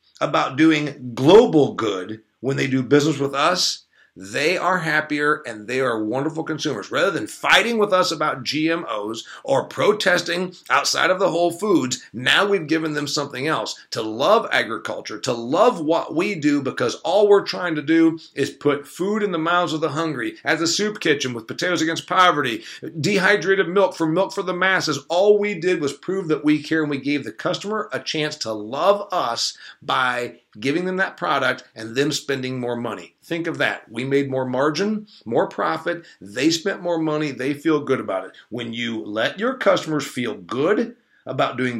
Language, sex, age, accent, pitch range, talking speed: English, male, 40-59, American, 130-180 Hz, 190 wpm